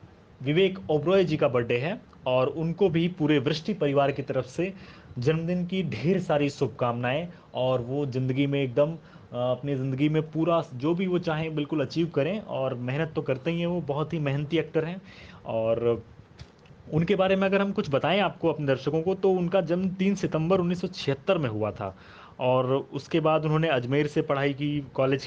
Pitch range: 135-170 Hz